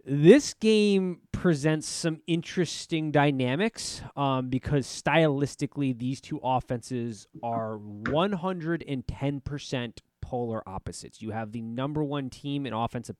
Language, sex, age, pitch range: English, male, 20-39, 120-160 Hz